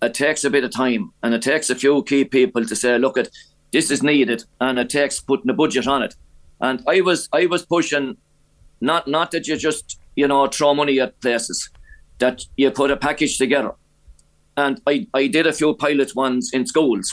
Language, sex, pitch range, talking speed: English, male, 130-145 Hz, 215 wpm